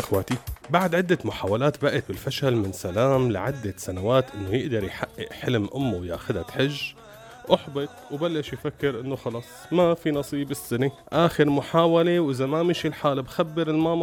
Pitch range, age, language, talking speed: 100-140 Hz, 30-49, Arabic, 145 wpm